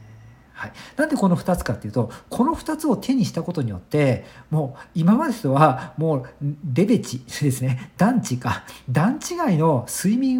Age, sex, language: 50-69, male, Japanese